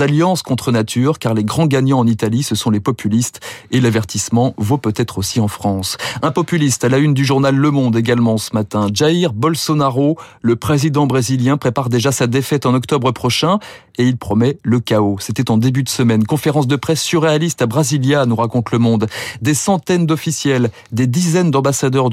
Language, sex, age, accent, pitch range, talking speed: French, male, 30-49, French, 120-155 Hz, 190 wpm